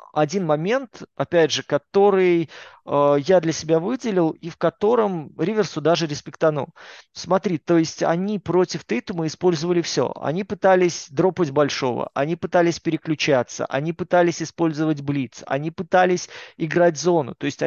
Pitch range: 145-185 Hz